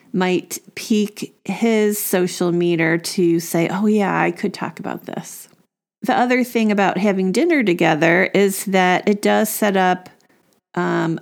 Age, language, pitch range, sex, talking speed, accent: 40-59, English, 170-210 Hz, female, 150 wpm, American